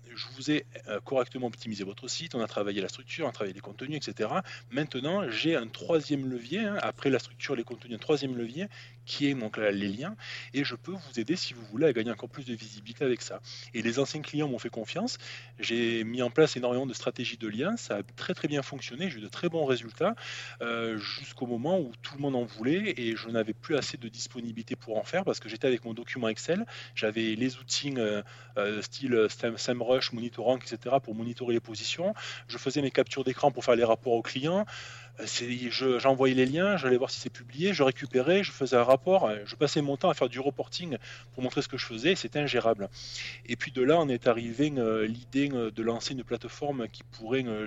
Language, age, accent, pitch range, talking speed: French, 20-39, French, 115-135 Hz, 230 wpm